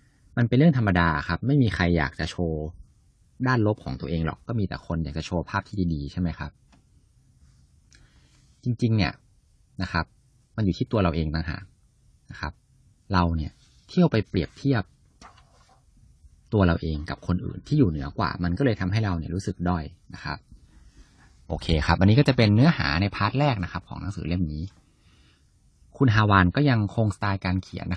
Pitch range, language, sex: 85-110 Hz, English, male